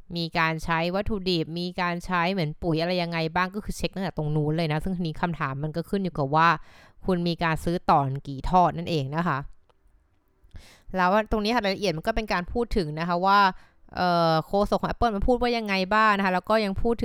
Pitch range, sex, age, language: 150-190 Hz, female, 20-39, Thai